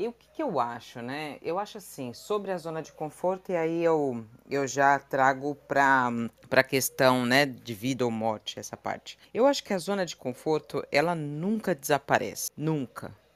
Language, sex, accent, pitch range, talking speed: Portuguese, female, Brazilian, 135-175 Hz, 185 wpm